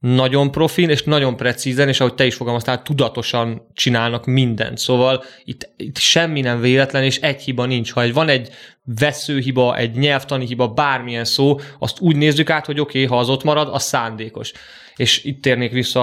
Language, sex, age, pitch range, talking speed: Hungarian, male, 20-39, 120-140 Hz, 185 wpm